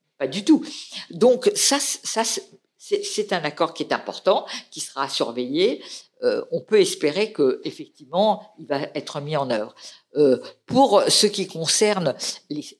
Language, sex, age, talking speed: French, female, 50-69, 160 wpm